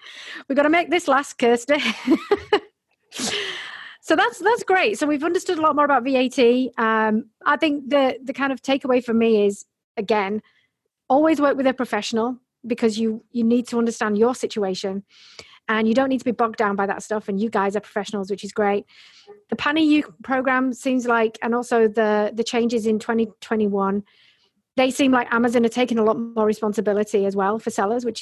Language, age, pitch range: English, 40-59, 220-270 Hz